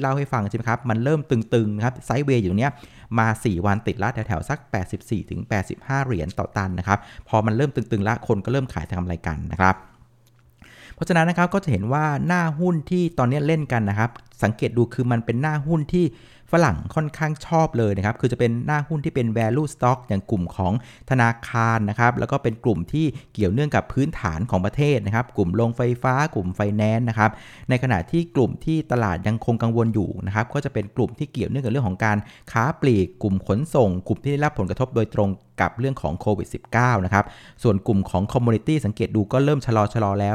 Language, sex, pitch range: Thai, male, 105-135 Hz